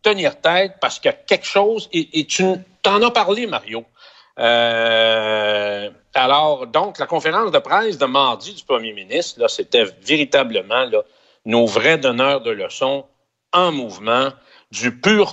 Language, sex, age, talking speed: French, male, 60-79, 155 wpm